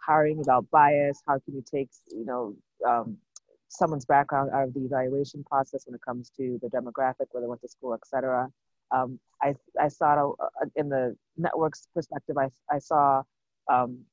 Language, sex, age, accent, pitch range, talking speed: English, female, 30-49, American, 135-155 Hz, 185 wpm